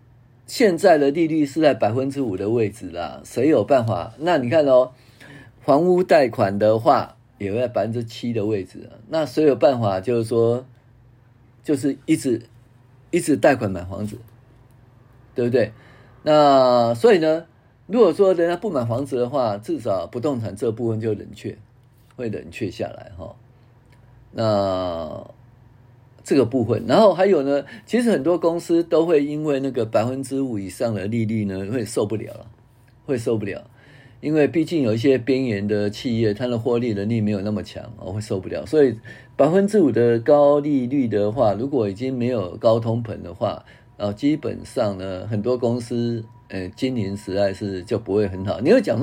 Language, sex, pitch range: Chinese, male, 110-135 Hz